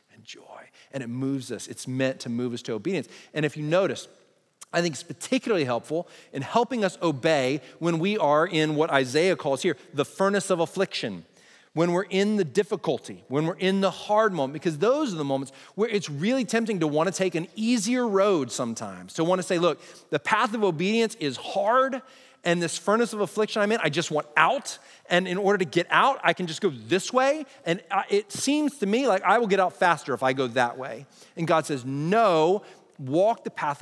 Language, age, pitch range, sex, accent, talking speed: English, 30-49, 145-205 Hz, male, American, 215 wpm